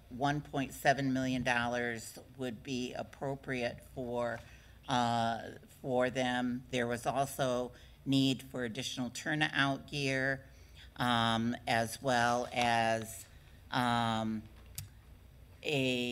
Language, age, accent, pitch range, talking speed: English, 50-69, American, 120-135 Hz, 85 wpm